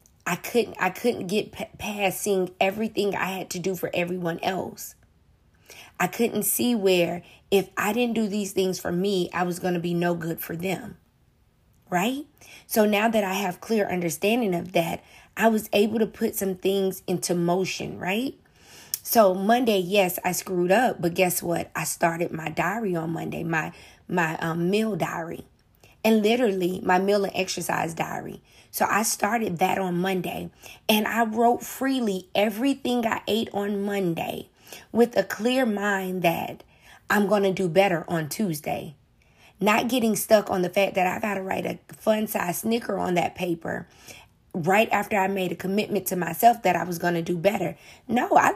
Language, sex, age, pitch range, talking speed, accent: English, female, 20-39, 180-215 Hz, 180 wpm, American